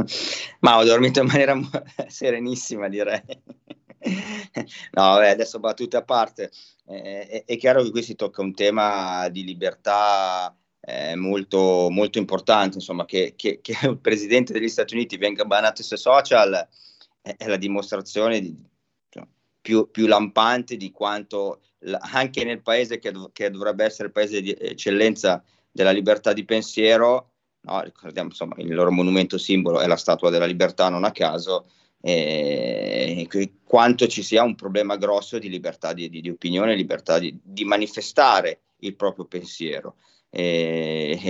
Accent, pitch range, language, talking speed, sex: native, 95-115 Hz, Italian, 155 wpm, male